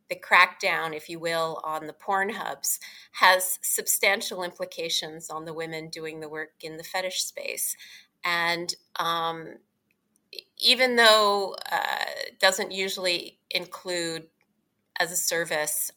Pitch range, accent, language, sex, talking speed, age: 160-195 Hz, American, English, female, 125 wpm, 30-49